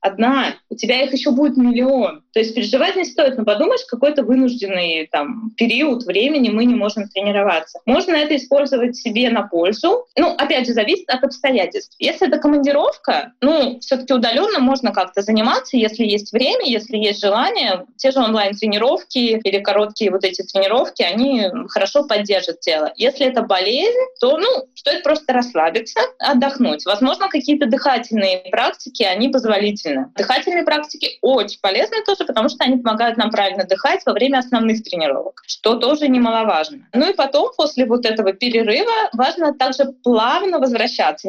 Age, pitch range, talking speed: 20-39, 210-285 Hz, 155 wpm